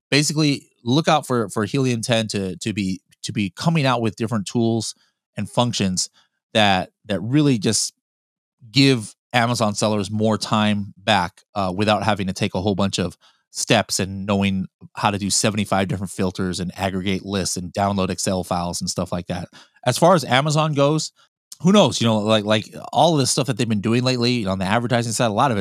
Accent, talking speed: American, 205 wpm